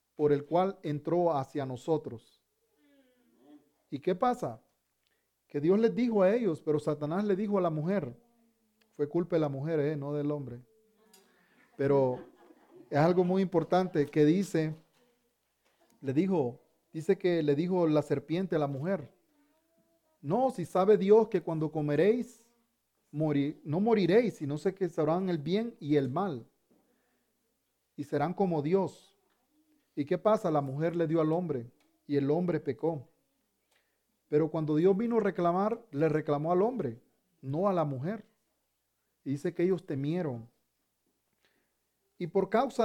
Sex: male